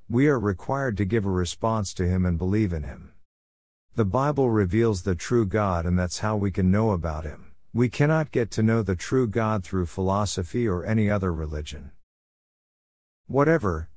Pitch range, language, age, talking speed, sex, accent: 85-115 Hz, English, 50-69, 180 wpm, male, American